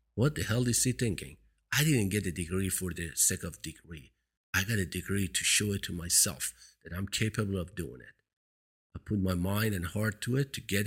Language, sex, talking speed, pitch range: English, male, 225 wpm, 85-110 Hz